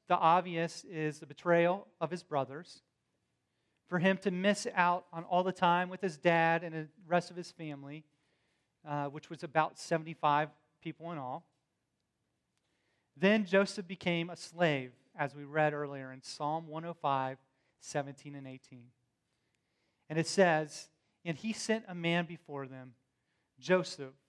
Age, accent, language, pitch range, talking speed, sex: 30-49, American, English, 140-180 Hz, 150 wpm, male